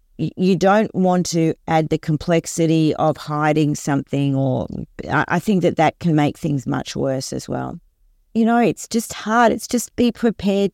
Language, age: English, 40-59